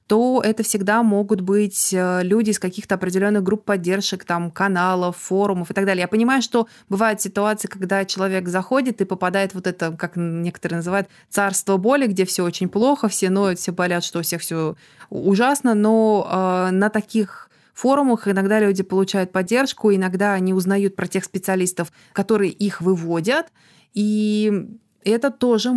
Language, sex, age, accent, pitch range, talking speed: Russian, female, 20-39, native, 190-220 Hz, 160 wpm